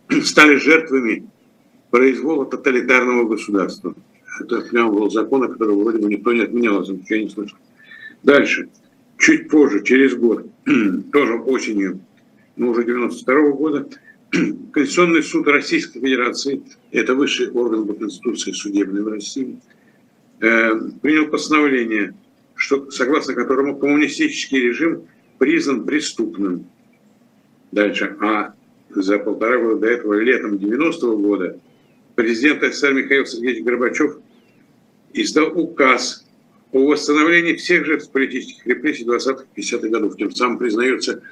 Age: 60-79